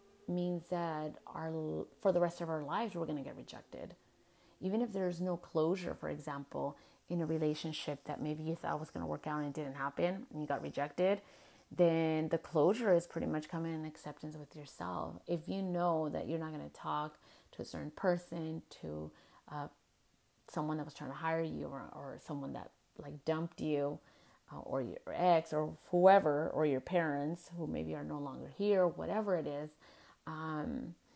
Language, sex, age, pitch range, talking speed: English, female, 30-49, 150-180 Hz, 195 wpm